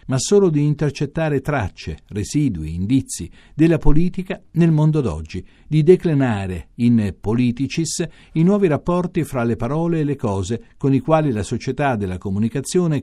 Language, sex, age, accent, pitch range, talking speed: Italian, male, 50-69, native, 115-160 Hz, 145 wpm